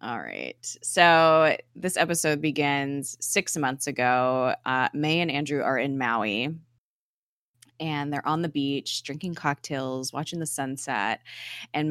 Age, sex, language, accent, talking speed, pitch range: 20-39, female, English, American, 135 wpm, 130-155 Hz